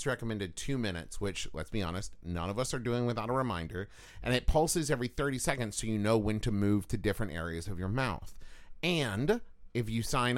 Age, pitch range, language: 30-49, 100-130 Hz, English